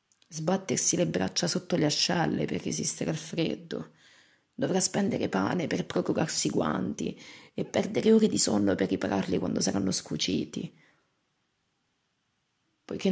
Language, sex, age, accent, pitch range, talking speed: Italian, female, 30-49, native, 140-165 Hz, 125 wpm